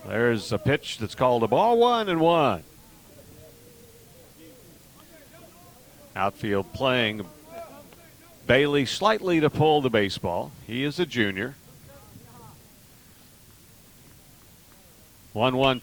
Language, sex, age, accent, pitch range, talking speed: English, male, 50-69, American, 105-150 Hz, 95 wpm